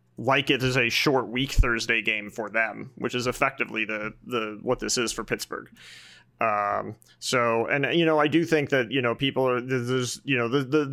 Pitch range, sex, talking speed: 110-135 Hz, male, 205 wpm